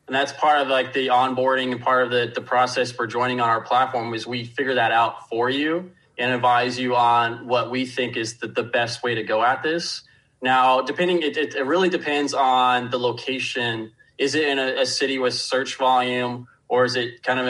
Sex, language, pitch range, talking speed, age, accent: male, English, 120-130 Hz, 220 wpm, 20-39, American